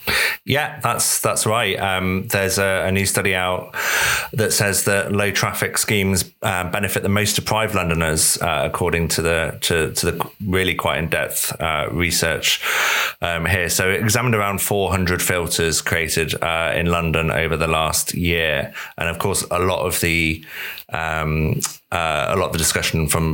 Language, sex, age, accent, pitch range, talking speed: English, male, 30-49, British, 80-95 Hz, 170 wpm